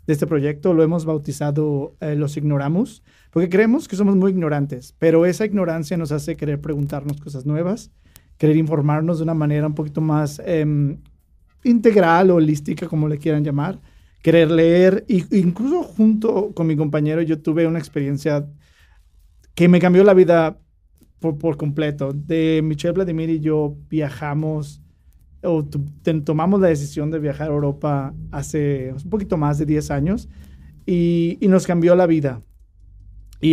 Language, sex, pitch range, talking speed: Spanish, male, 145-170 Hz, 155 wpm